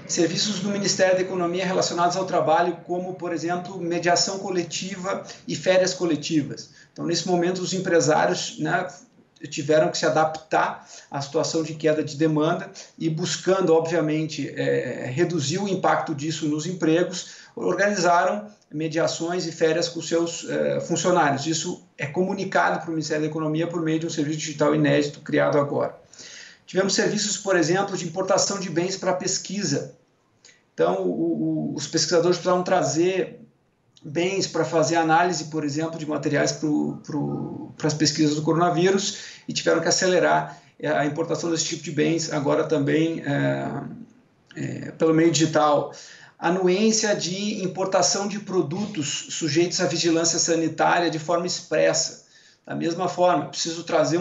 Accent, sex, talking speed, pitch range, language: Brazilian, male, 145 wpm, 155-180 Hz, Portuguese